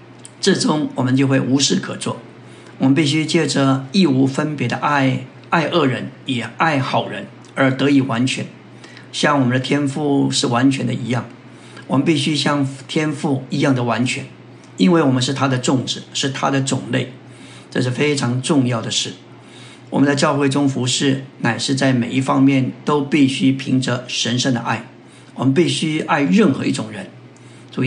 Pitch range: 125-145 Hz